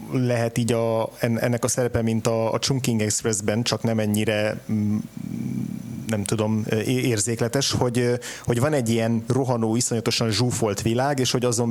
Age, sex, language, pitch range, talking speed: 30-49, male, Hungarian, 110-125 Hz, 150 wpm